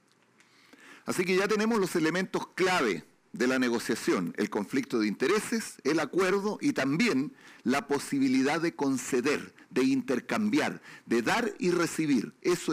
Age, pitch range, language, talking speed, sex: 50-69, 140-210 Hz, Spanish, 135 wpm, male